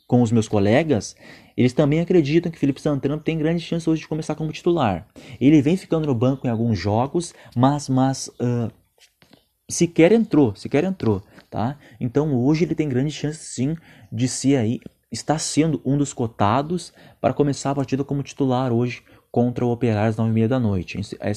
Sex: male